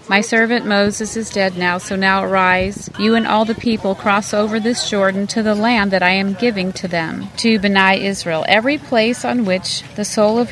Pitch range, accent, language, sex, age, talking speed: 190-230 Hz, American, English, female, 40-59, 210 wpm